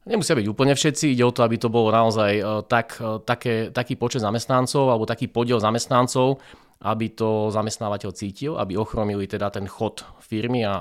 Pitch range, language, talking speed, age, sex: 105-120 Hz, Slovak, 170 wpm, 20-39, male